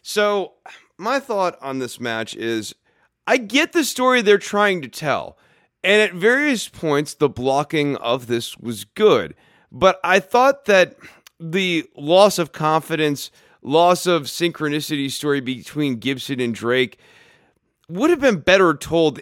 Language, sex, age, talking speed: English, male, 30-49, 145 wpm